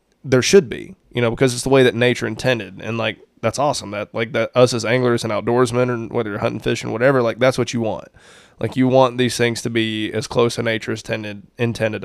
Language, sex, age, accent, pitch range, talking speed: English, male, 20-39, American, 110-125 Hz, 250 wpm